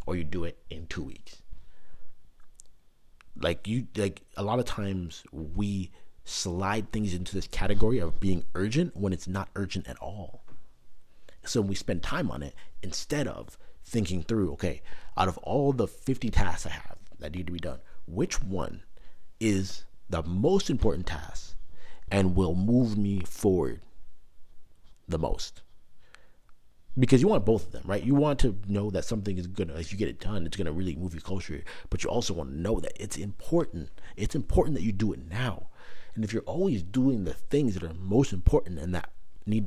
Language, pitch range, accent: English, 85-110 Hz, American